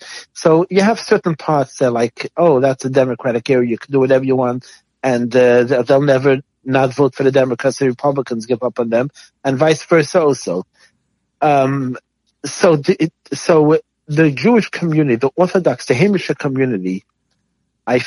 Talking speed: 165 wpm